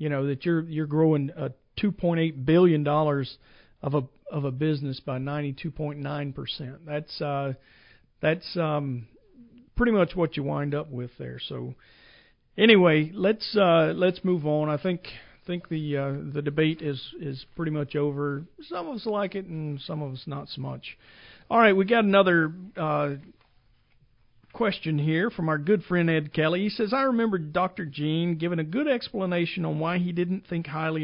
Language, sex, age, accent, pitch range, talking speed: English, male, 50-69, American, 145-180 Hz, 175 wpm